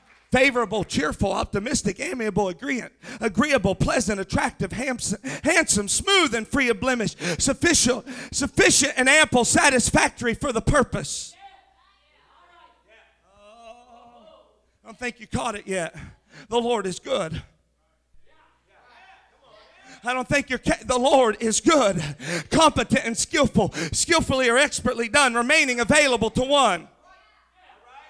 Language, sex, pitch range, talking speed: English, male, 240-345 Hz, 115 wpm